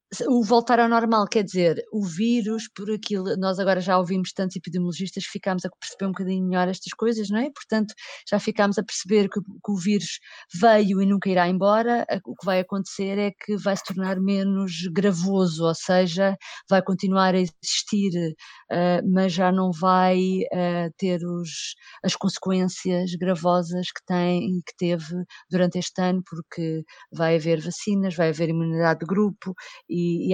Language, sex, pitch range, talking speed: Portuguese, female, 170-195 Hz, 170 wpm